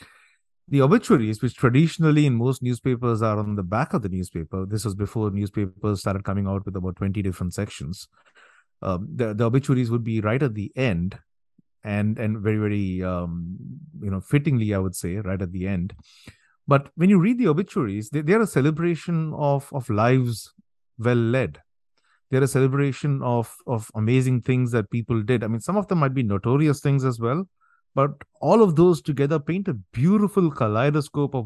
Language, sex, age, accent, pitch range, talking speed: English, male, 30-49, Indian, 105-140 Hz, 185 wpm